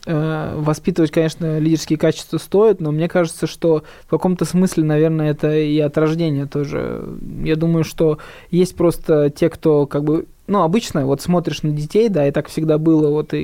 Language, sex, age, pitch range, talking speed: Russian, male, 20-39, 150-170 Hz, 180 wpm